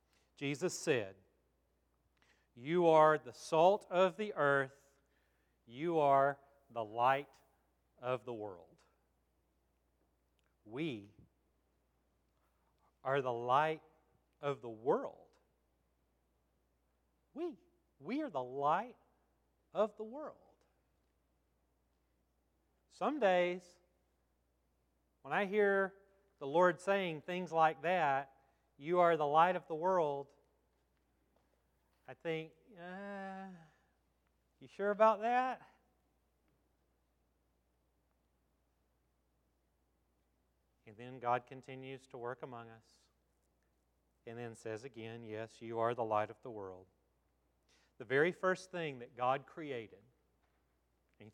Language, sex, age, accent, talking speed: English, male, 40-59, American, 100 wpm